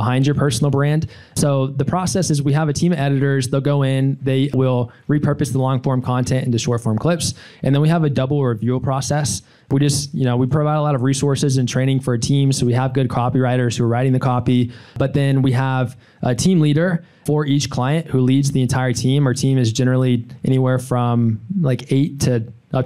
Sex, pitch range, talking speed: male, 125-145 Hz, 225 wpm